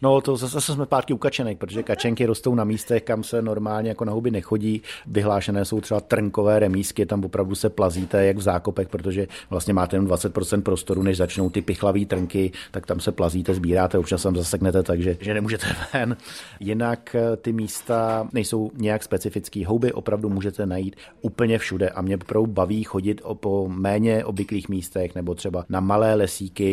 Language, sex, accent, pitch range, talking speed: Czech, male, native, 95-110 Hz, 180 wpm